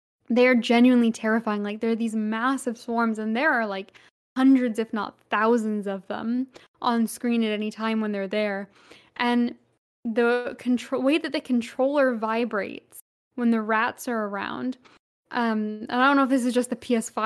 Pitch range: 225-260 Hz